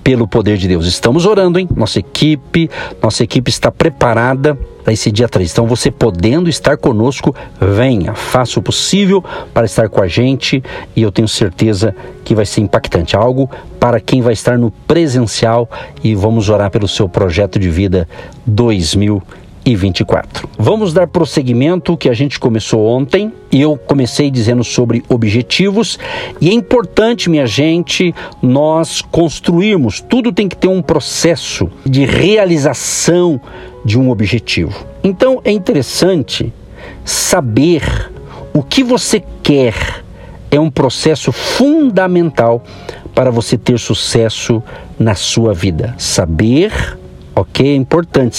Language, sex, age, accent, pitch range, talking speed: Portuguese, male, 60-79, Brazilian, 110-160 Hz, 140 wpm